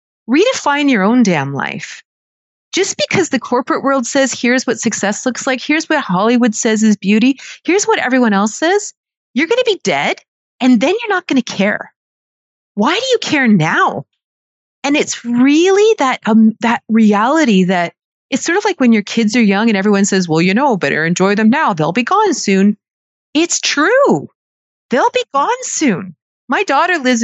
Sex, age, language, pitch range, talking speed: female, 30-49, English, 205-305 Hz, 185 wpm